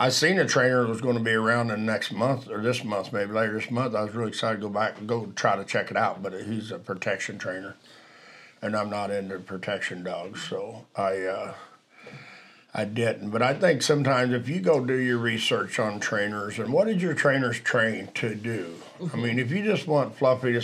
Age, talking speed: 50-69, 225 wpm